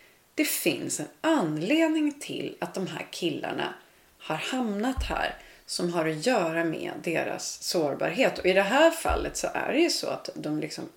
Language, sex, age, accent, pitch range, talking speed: Swedish, female, 30-49, native, 160-265 Hz, 175 wpm